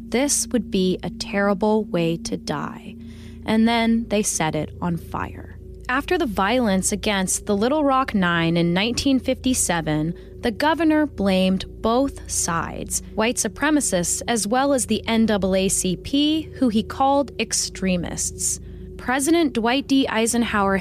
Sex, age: female, 20-39